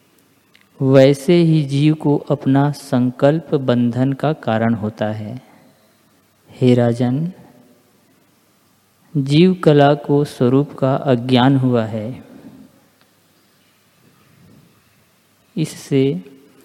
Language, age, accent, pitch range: Hindi, 50-69, native, 130-165 Hz